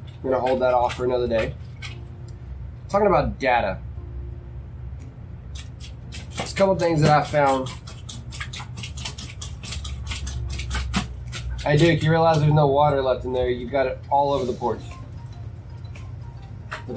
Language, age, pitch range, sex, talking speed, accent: English, 20-39, 115-140 Hz, male, 125 wpm, American